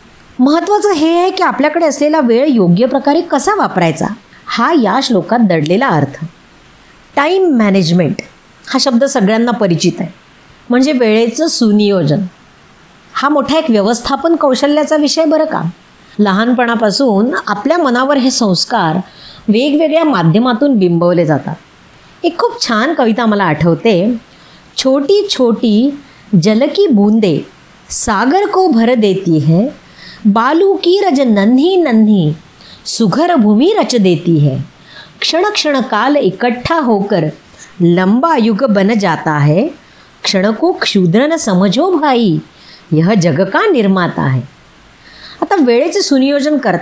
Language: Marathi